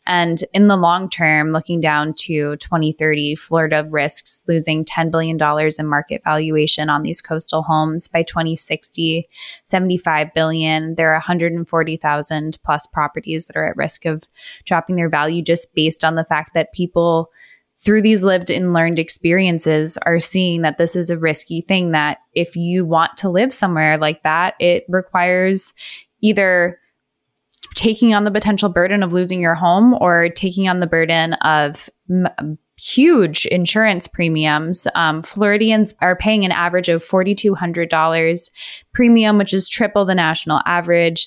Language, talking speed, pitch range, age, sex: English, 150 wpm, 160-185 Hz, 10-29, female